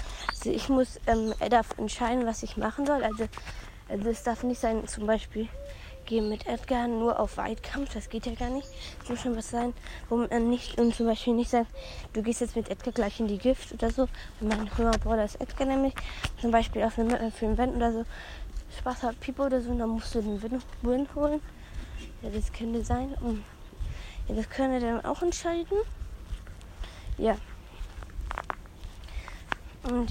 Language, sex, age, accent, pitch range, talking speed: German, female, 20-39, German, 225-260 Hz, 185 wpm